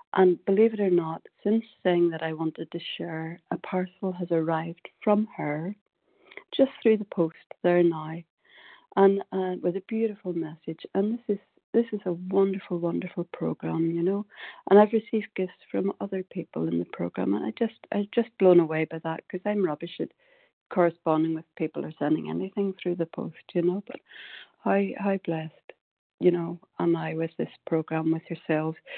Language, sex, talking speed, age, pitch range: English, female, 180 wpm, 60-79, 160-195 Hz